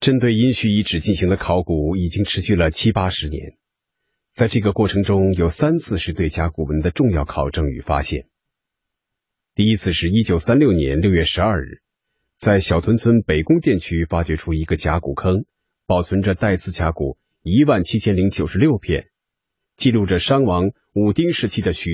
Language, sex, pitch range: Chinese, male, 85-110 Hz